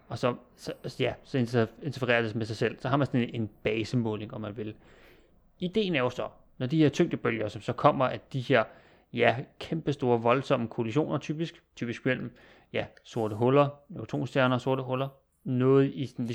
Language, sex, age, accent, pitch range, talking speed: Danish, male, 30-49, native, 120-145 Hz, 175 wpm